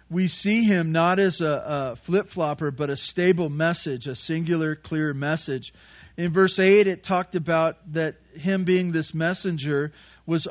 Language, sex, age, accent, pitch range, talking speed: English, male, 40-59, American, 135-180 Hz, 160 wpm